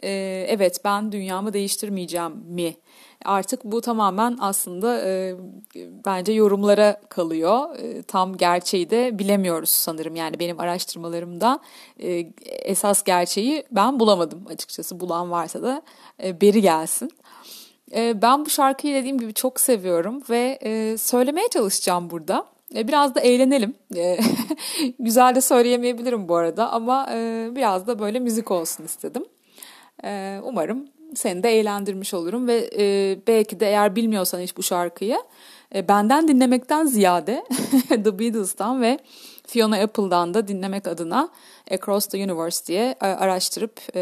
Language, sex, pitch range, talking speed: Turkish, female, 180-245 Hz, 115 wpm